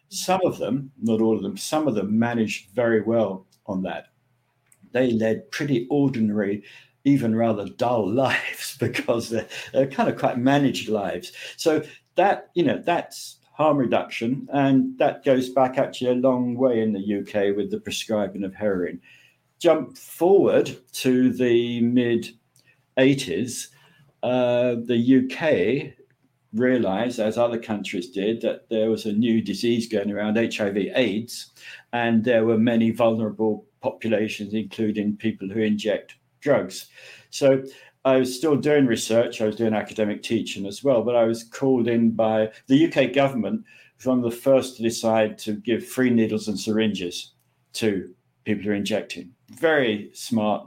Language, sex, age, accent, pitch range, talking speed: English, male, 60-79, British, 110-130 Hz, 155 wpm